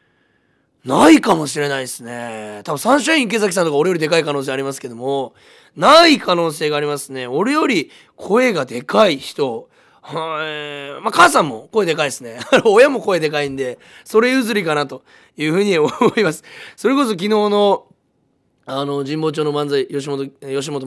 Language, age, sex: Japanese, 20-39, male